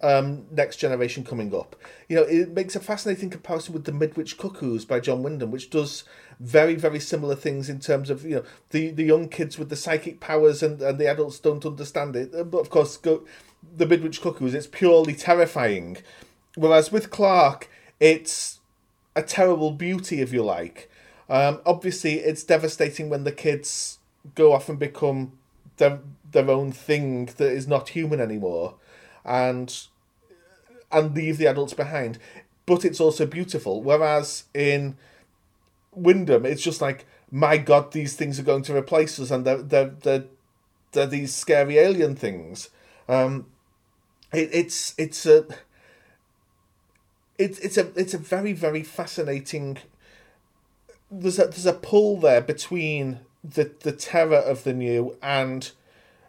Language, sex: English, male